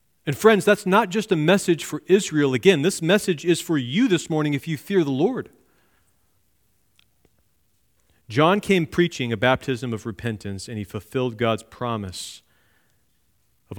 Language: English